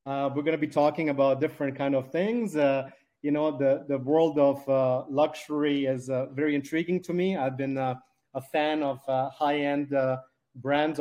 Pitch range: 135-155 Hz